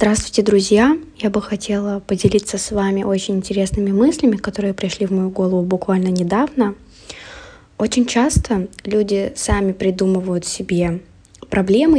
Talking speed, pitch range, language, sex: 125 wpm, 190-225 Hz, Russian, female